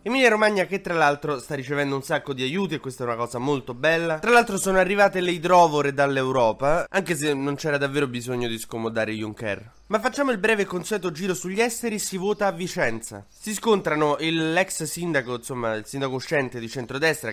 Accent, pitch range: native, 125-165 Hz